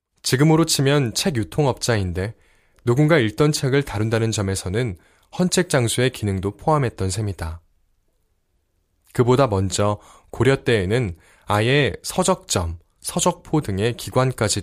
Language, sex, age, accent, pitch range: Korean, male, 20-39, native, 95-135 Hz